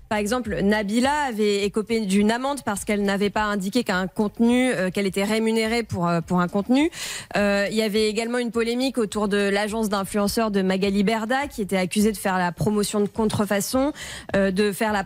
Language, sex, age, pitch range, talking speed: French, female, 20-39, 200-245 Hz, 180 wpm